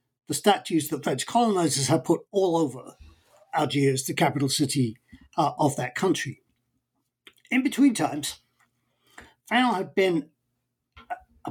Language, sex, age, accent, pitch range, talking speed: English, male, 50-69, British, 140-195 Hz, 125 wpm